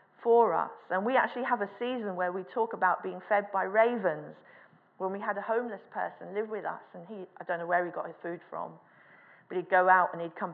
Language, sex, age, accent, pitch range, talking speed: English, female, 40-59, British, 185-230 Hz, 245 wpm